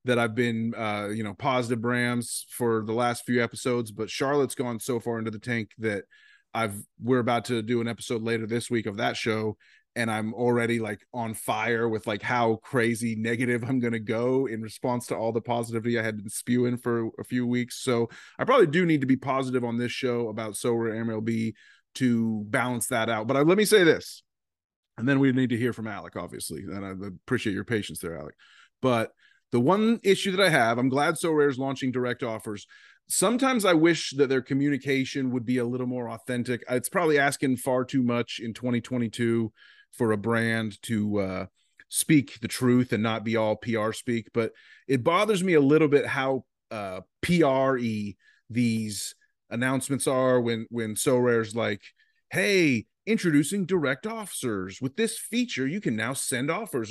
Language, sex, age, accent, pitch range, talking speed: English, male, 30-49, American, 115-135 Hz, 190 wpm